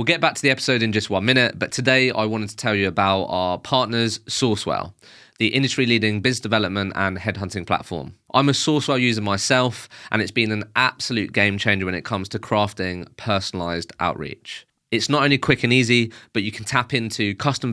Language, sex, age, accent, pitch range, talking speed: English, male, 20-39, British, 95-120 Hz, 200 wpm